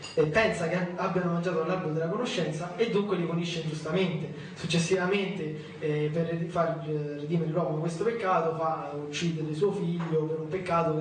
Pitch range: 155-185 Hz